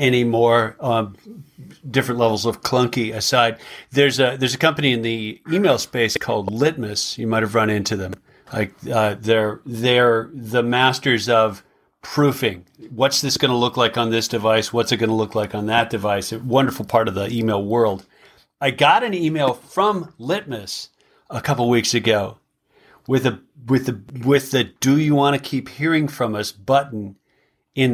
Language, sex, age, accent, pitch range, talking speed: English, male, 40-59, American, 115-140 Hz, 185 wpm